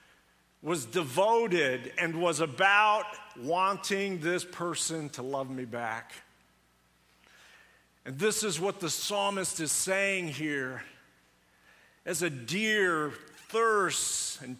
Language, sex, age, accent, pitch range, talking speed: English, male, 50-69, American, 135-185 Hz, 105 wpm